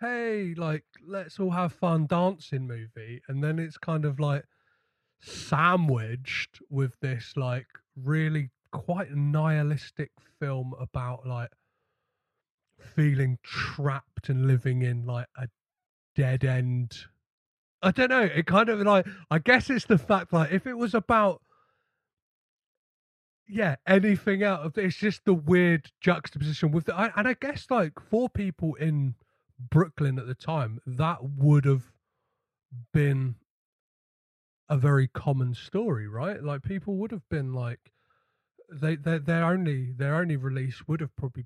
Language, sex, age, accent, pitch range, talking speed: English, male, 30-49, British, 125-180 Hz, 140 wpm